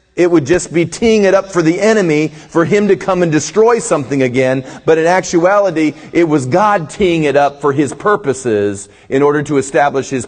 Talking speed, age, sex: 205 wpm, 40-59, male